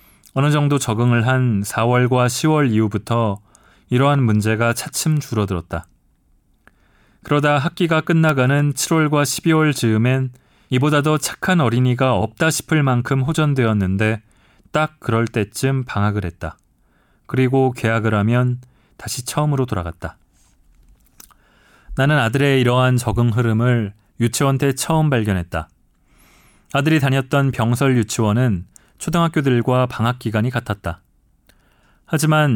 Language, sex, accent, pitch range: Korean, male, native, 110-140 Hz